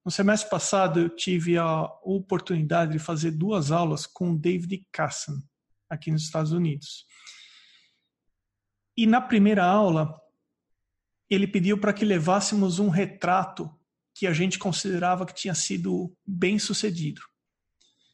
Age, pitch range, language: 40-59, 165-210 Hz, Portuguese